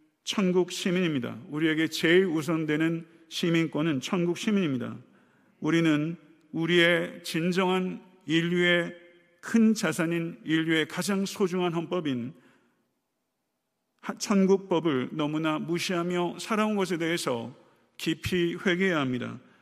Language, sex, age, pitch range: Korean, male, 50-69, 160-200 Hz